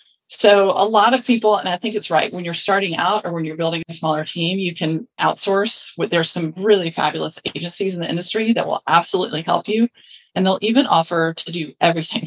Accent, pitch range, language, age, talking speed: American, 165-210 Hz, English, 30-49, 215 wpm